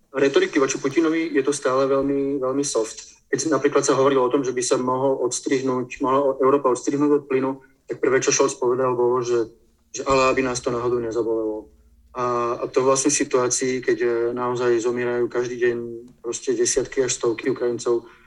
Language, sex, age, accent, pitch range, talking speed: Czech, male, 30-49, native, 125-150 Hz, 175 wpm